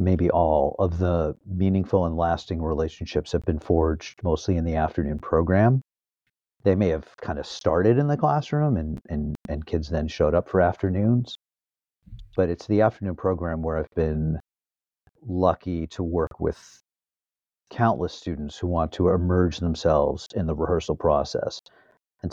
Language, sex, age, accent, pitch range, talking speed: English, male, 50-69, American, 85-105 Hz, 155 wpm